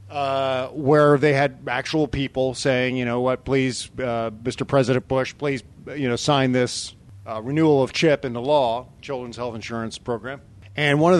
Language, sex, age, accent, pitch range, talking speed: English, male, 40-59, American, 115-150 Hz, 175 wpm